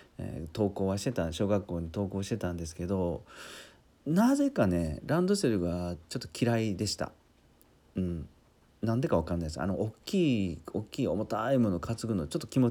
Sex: male